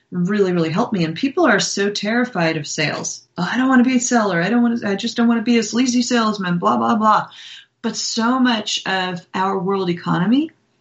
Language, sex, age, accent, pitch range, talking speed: English, female, 30-49, American, 170-225 Hz, 235 wpm